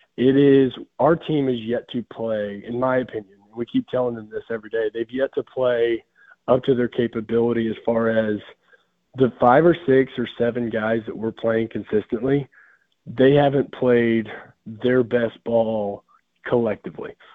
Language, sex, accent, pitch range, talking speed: English, male, American, 110-130 Hz, 165 wpm